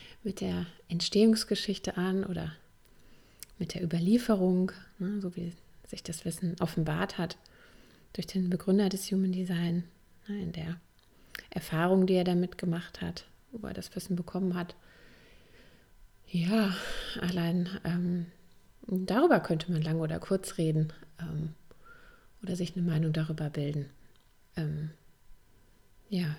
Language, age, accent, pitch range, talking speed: German, 30-49, German, 165-195 Hz, 125 wpm